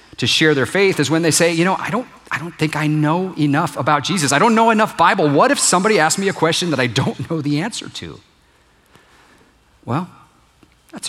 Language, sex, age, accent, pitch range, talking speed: English, male, 40-59, American, 130-170 Hz, 220 wpm